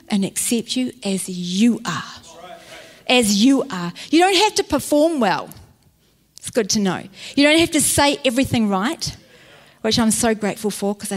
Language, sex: English, female